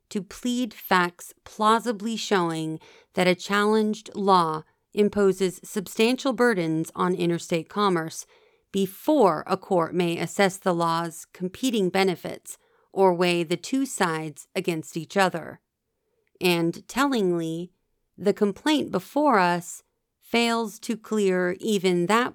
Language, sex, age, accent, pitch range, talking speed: English, female, 40-59, American, 175-230 Hz, 115 wpm